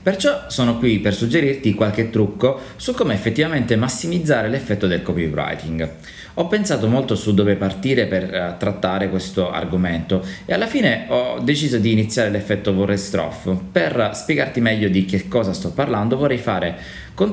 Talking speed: 150 wpm